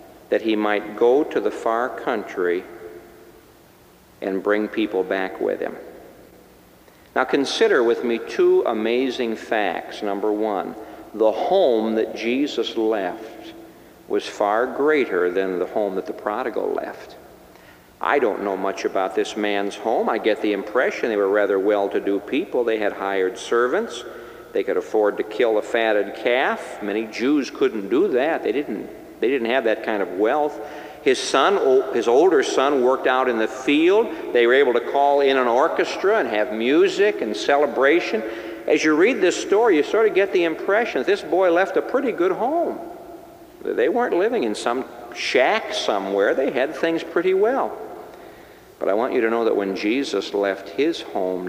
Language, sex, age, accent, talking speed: English, male, 50-69, American, 170 wpm